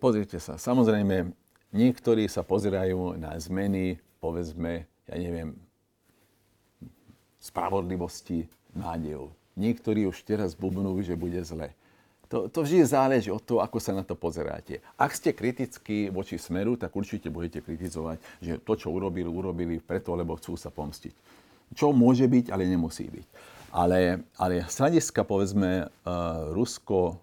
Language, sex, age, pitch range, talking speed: Slovak, male, 50-69, 85-100 Hz, 135 wpm